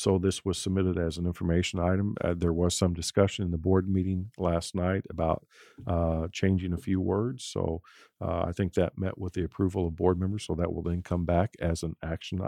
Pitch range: 85-100 Hz